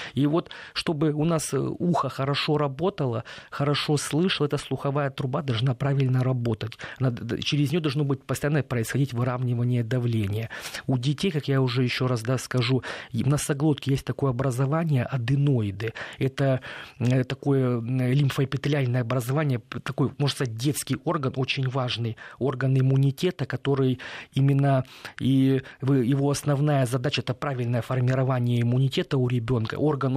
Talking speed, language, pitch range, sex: 130 wpm, Russian, 125-145 Hz, male